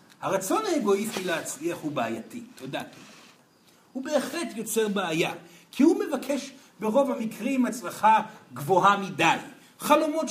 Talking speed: 110 wpm